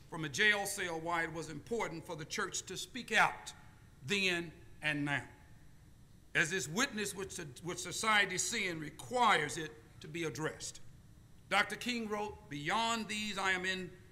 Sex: male